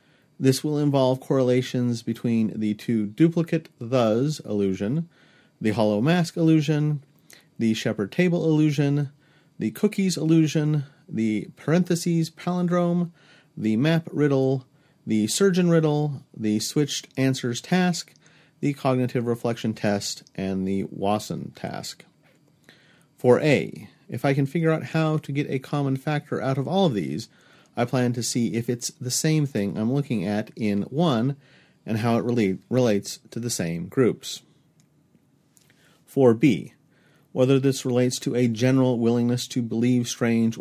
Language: English